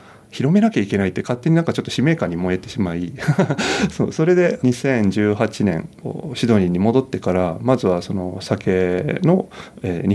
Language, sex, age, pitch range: Japanese, male, 30-49, 95-130 Hz